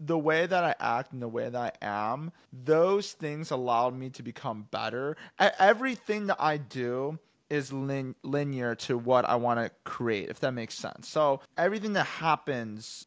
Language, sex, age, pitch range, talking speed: English, male, 30-49, 125-155 Hz, 175 wpm